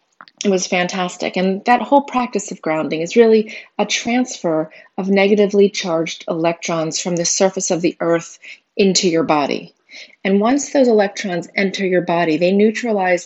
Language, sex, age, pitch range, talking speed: English, female, 30-49, 165-215 Hz, 160 wpm